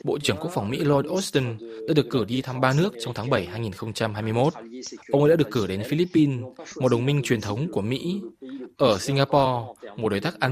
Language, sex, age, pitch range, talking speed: Vietnamese, male, 20-39, 115-155 Hz, 215 wpm